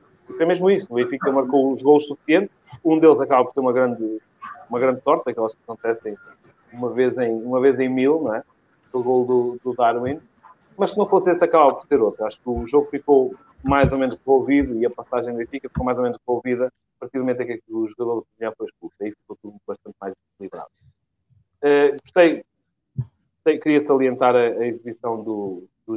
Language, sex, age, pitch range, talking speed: English, male, 30-49, 115-150 Hz, 215 wpm